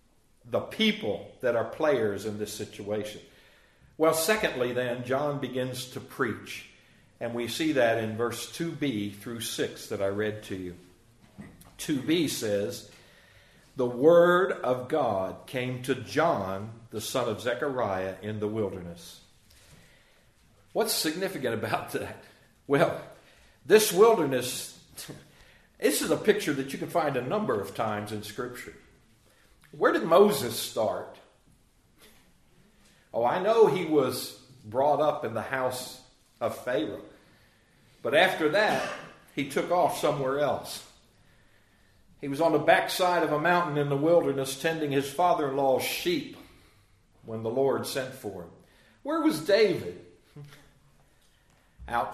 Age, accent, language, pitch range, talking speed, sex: 60-79, American, English, 105-150 Hz, 130 wpm, male